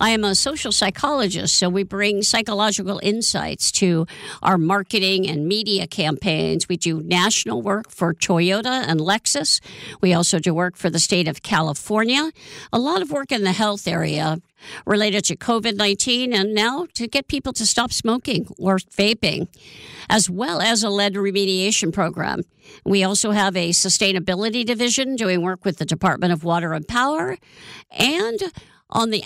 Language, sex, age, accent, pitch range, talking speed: English, female, 50-69, American, 175-220 Hz, 160 wpm